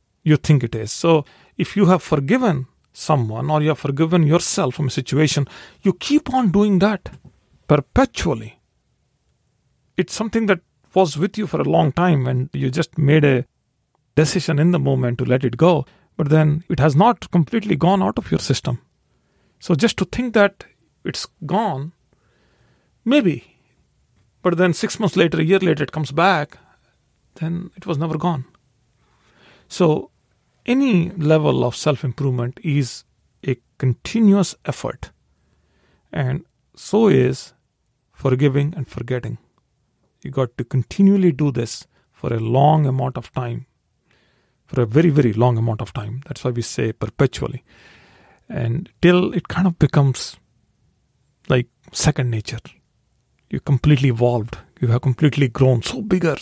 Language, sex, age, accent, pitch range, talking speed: English, male, 40-59, Indian, 130-175 Hz, 150 wpm